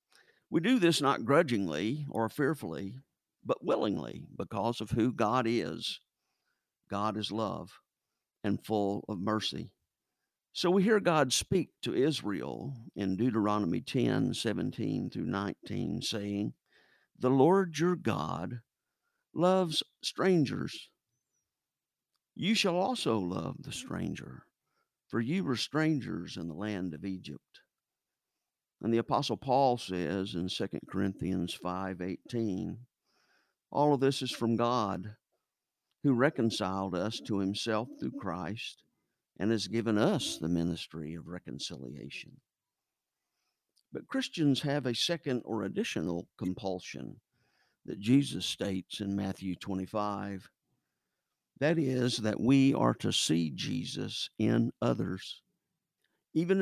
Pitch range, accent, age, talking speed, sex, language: 95-135 Hz, American, 50-69, 115 wpm, male, English